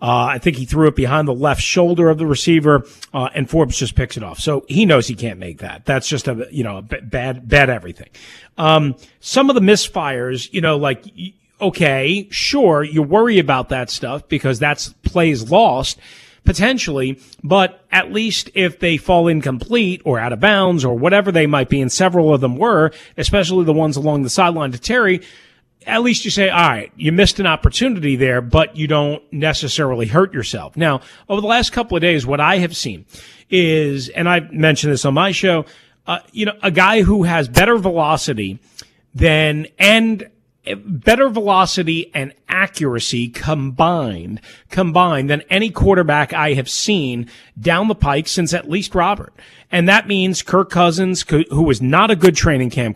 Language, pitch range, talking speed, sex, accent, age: English, 135-180 Hz, 185 wpm, male, American, 40-59